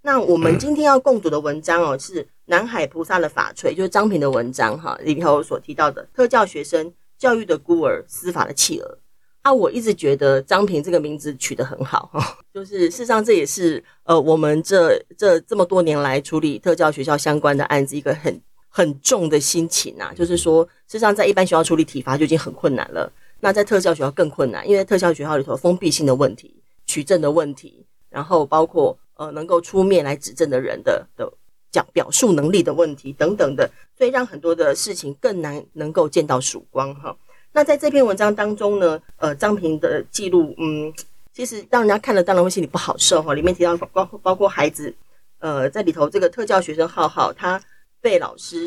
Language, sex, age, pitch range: Chinese, female, 30-49, 150-205 Hz